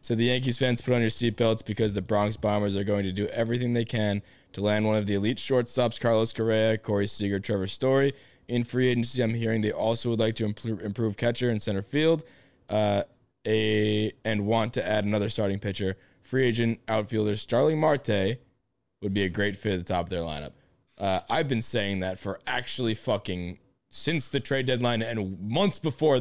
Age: 20-39